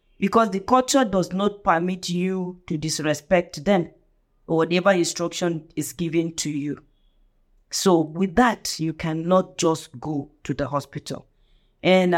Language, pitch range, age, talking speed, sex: English, 150-200 Hz, 40-59, 140 wpm, female